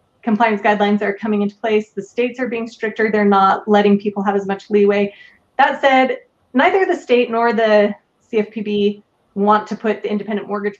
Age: 30-49